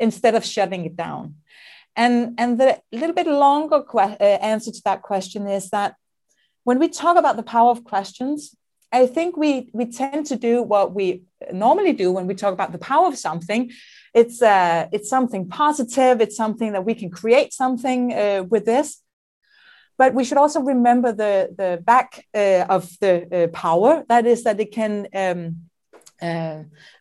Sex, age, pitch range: female, 30-49, 200-255 Hz